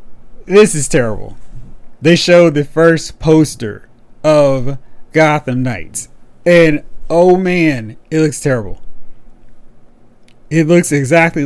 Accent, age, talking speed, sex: American, 30-49, 105 wpm, male